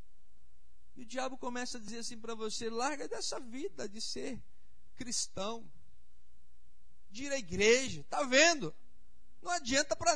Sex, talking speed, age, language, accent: male, 140 wpm, 50-69, Portuguese, Brazilian